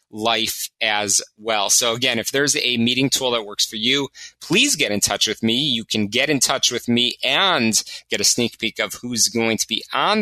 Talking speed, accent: 225 wpm, American